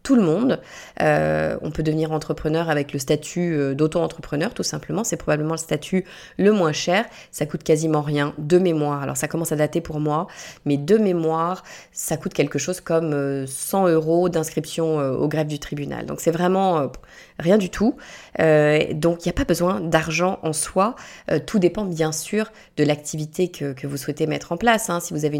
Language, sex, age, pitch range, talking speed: French, female, 20-39, 150-175 Hz, 195 wpm